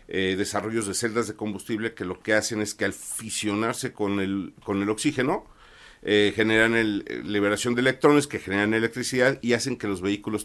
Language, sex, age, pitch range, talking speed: Spanish, male, 50-69, 100-120 Hz, 190 wpm